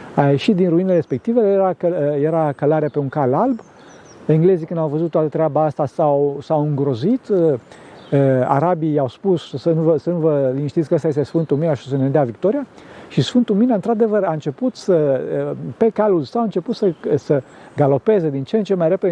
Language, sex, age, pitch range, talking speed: Romanian, male, 50-69, 145-195 Hz, 190 wpm